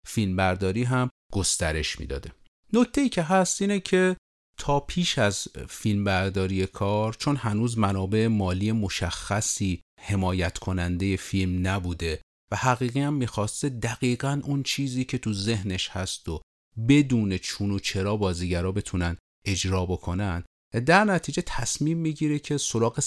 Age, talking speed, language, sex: 40-59, 130 wpm, Persian, male